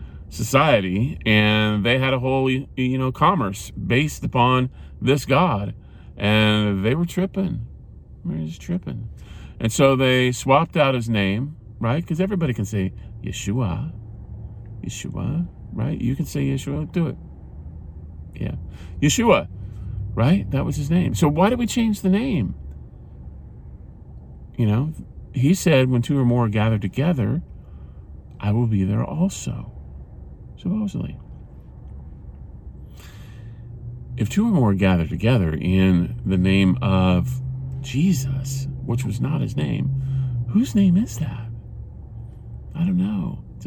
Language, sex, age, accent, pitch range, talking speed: English, male, 40-59, American, 95-140 Hz, 130 wpm